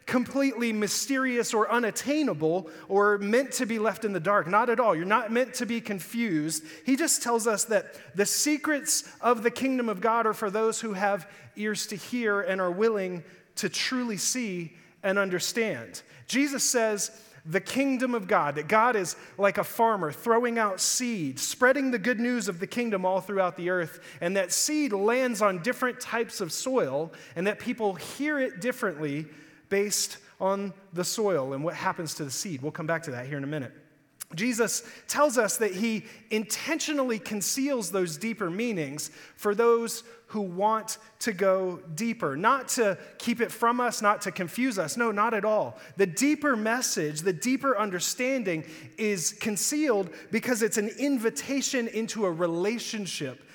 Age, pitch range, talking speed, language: 30-49, 180-235 Hz, 175 wpm, English